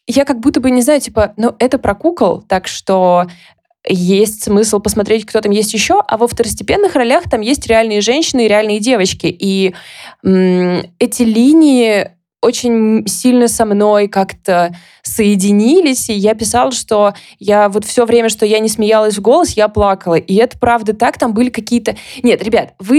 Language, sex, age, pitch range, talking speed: Russian, female, 20-39, 190-235 Hz, 170 wpm